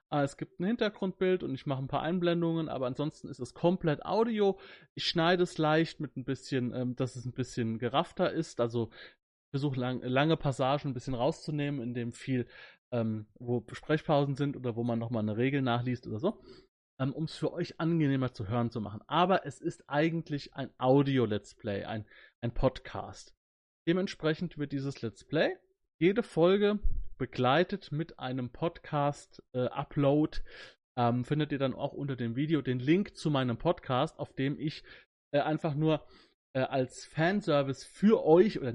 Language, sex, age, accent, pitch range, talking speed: German, male, 30-49, German, 125-160 Hz, 165 wpm